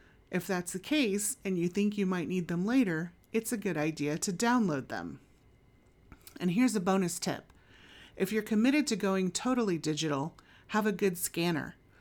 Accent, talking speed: American, 175 wpm